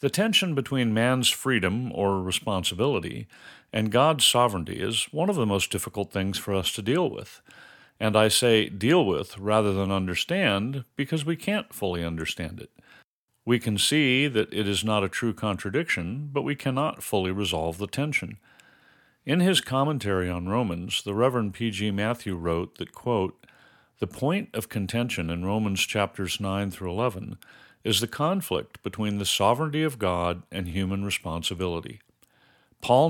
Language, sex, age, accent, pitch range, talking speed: English, male, 50-69, American, 95-125 Hz, 160 wpm